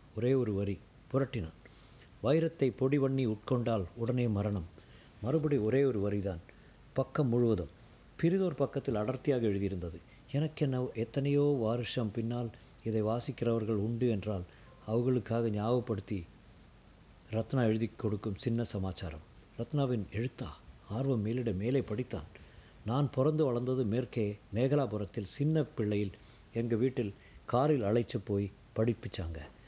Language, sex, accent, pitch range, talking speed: Tamil, male, native, 105-130 Hz, 105 wpm